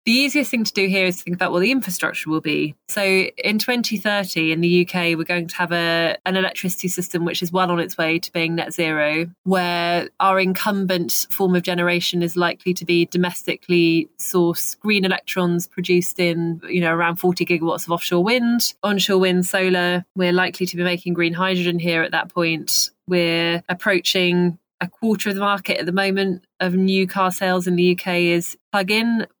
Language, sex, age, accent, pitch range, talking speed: English, female, 20-39, British, 175-195 Hz, 195 wpm